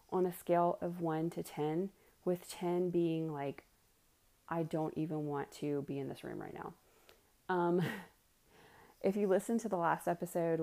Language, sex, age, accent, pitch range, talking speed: English, female, 30-49, American, 150-180 Hz, 170 wpm